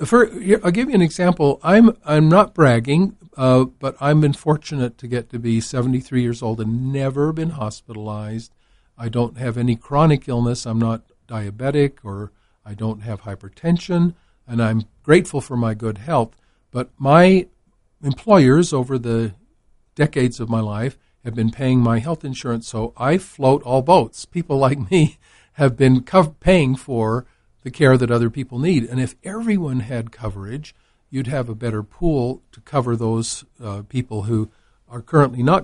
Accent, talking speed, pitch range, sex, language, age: American, 170 wpm, 110-140 Hz, male, English, 50-69